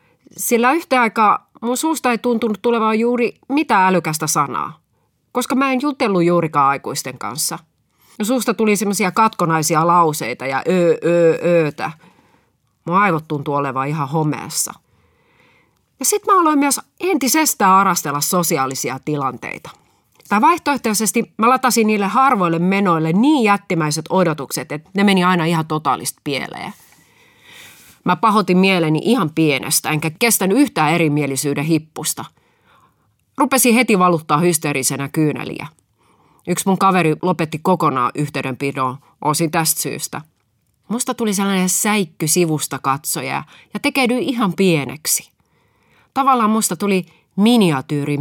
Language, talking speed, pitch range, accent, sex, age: Finnish, 125 wpm, 150-220 Hz, native, female, 30-49